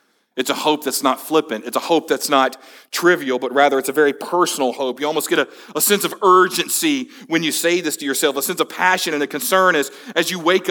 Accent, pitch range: American, 135-170 Hz